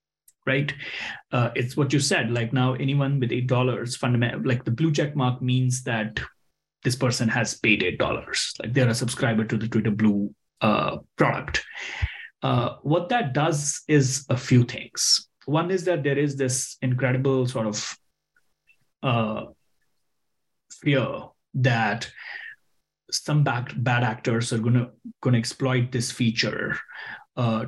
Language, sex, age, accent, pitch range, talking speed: English, male, 30-49, Indian, 120-140 Hz, 140 wpm